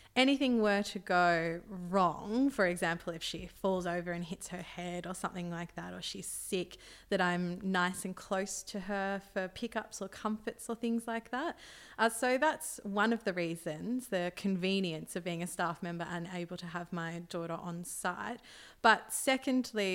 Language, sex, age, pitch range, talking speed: English, female, 20-39, 175-200 Hz, 185 wpm